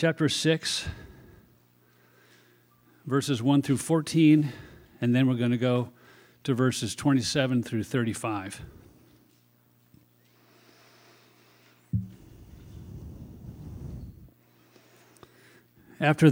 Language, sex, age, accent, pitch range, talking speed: English, male, 50-69, American, 100-135 Hz, 65 wpm